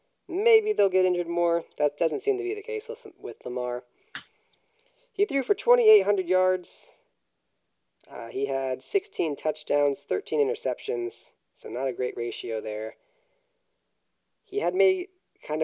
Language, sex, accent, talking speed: English, male, American, 140 wpm